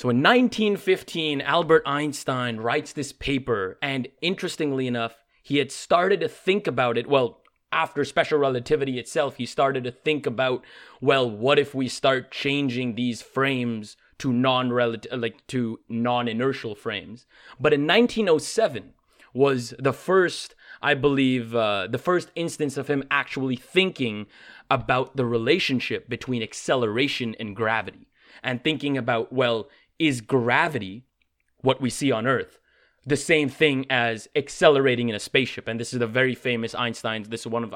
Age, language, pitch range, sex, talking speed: 20-39, English, 120-145 Hz, male, 155 wpm